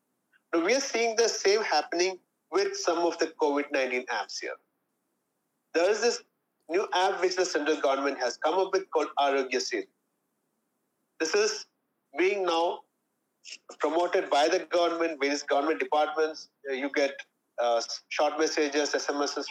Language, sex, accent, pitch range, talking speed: English, male, Indian, 140-190 Hz, 145 wpm